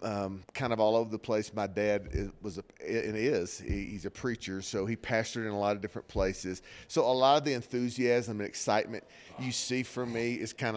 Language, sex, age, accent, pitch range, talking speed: English, male, 40-59, American, 100-120 Hz, 225 wpm